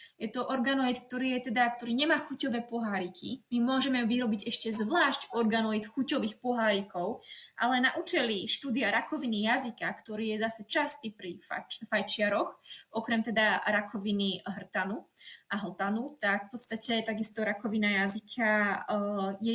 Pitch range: 205-240 Hz